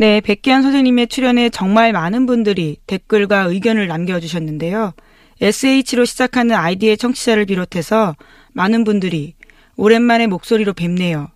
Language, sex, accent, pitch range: Korean, female, native, 175-230 Hz